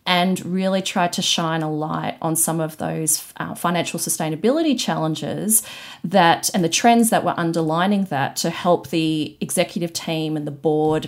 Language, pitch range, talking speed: English, 160-190 Hz, 170 wpm